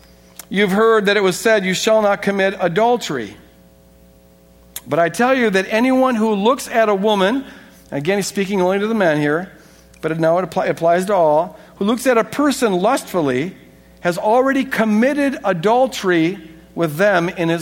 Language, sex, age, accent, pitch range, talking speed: English, male, 60-79, American, 165-230 Hz, 165 wpm